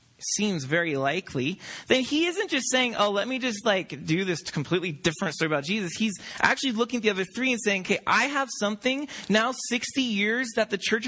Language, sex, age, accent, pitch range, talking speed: English, male, 20-39, American, 185-245 Hz, 210 wpm